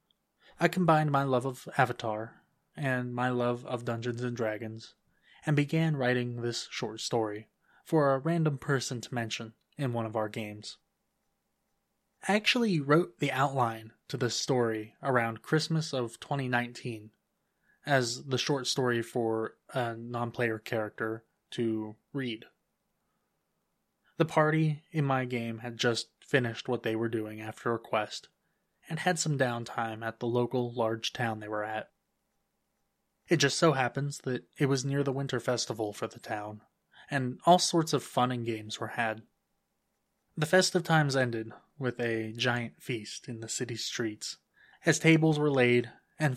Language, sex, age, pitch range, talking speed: English, male, 20-39, 115-145 Hz, 155 wpm